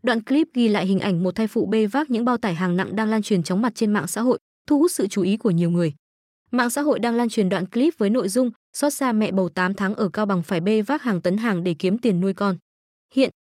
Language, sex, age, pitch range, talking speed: Vietnamese, female, 20-39, 185-250 Hz, 290 wpm